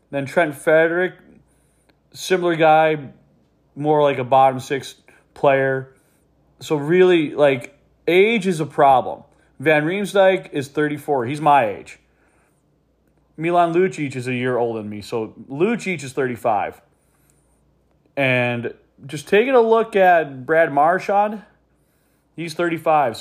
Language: English